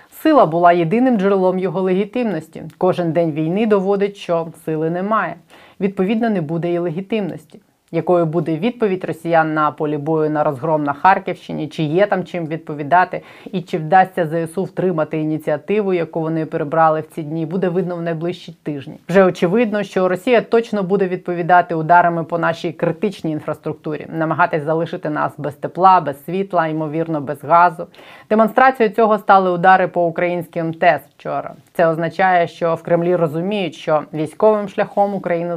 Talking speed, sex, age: 155 wpm, female, 20-39